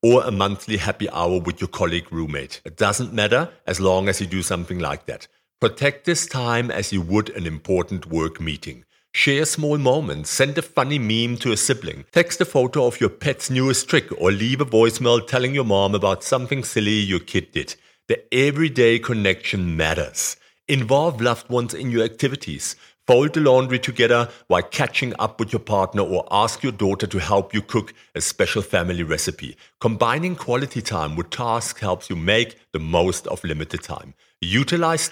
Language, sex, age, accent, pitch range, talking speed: English, male, 50-69, German, 95-130 Hz, 185 wpm